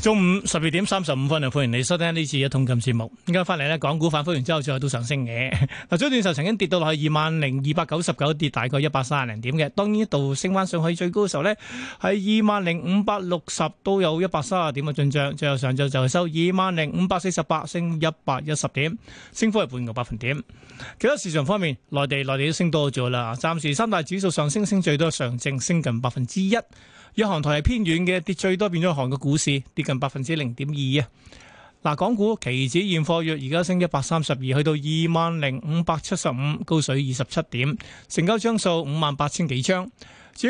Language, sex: Chinese, male